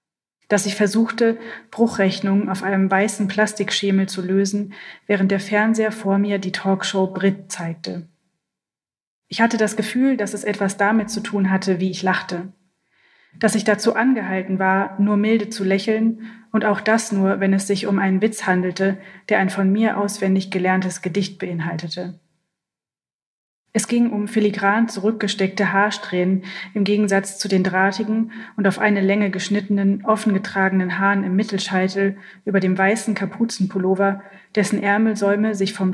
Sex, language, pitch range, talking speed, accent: female, German, 190-210 Hz, 150 wpm, German